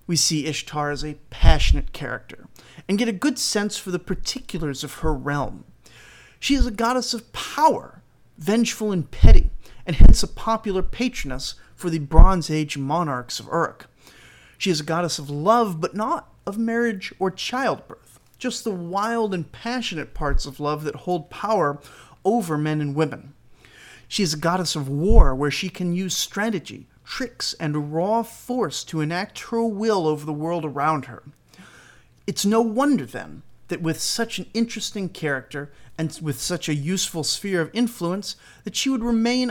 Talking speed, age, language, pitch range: 170 wpm, 40-59, English, 150-210 Hz